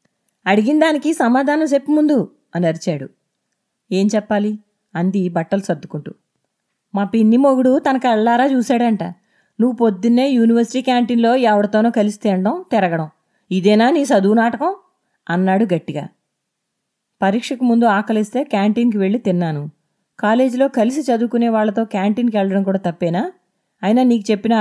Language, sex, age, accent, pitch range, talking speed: Telugu, female, 30-49, native, 195-250 Hz, 120 wpm